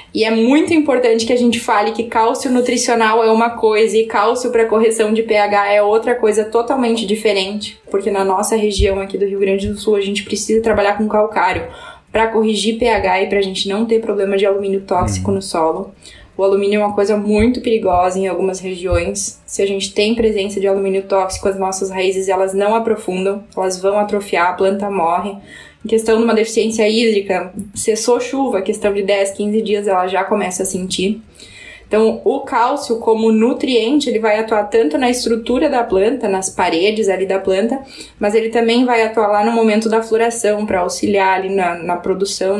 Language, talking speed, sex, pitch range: Portuguese, 195 wpm, female, 195-225 Hz